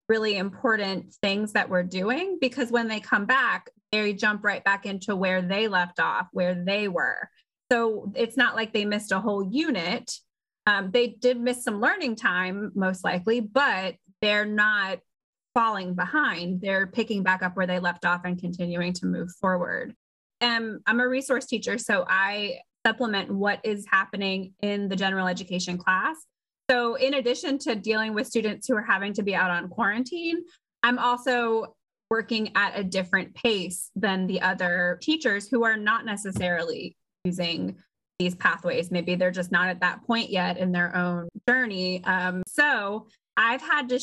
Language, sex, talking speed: English, female, 170 wpm